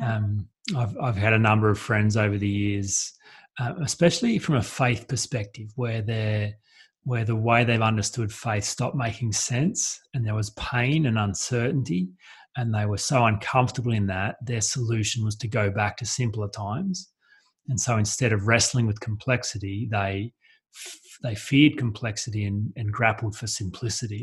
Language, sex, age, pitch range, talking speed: English, male, 30-49, 105-125 Hz, 165 wpm